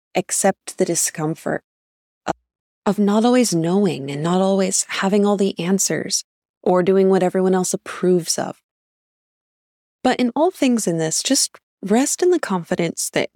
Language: English